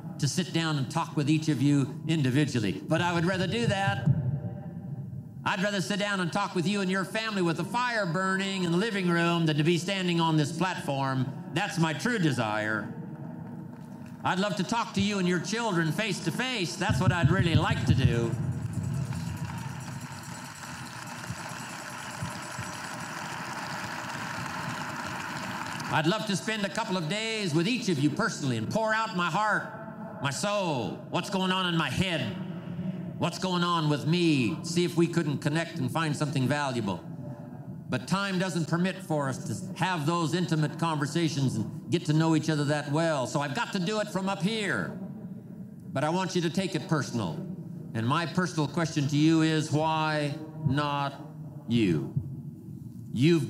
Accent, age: American, 60-79